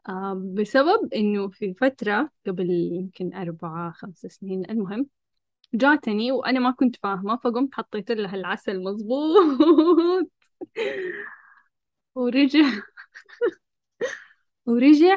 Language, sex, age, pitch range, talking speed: Arabic, female, 10-29, 210-265 Hz, 85 wpm